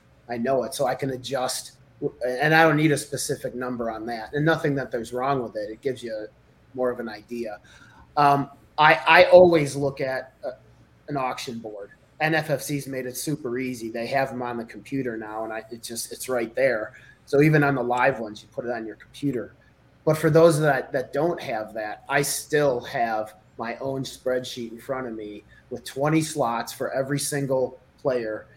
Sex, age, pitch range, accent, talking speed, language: male, 30-49, 115-145 Hz, American, 205 wpm, English